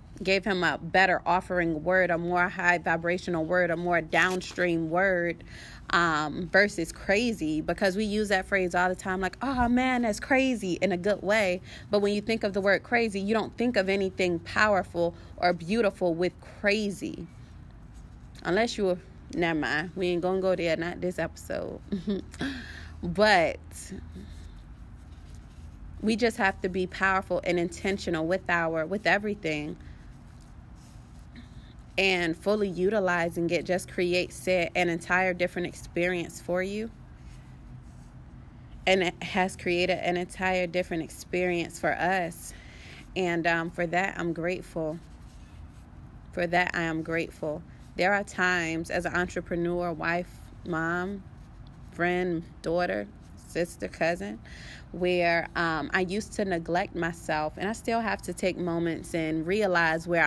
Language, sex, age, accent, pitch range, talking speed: English, female, 20-39, American, 165-190 Hz, 140 wpm